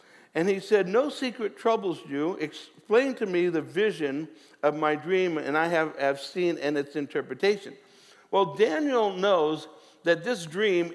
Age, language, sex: 60-79, English, male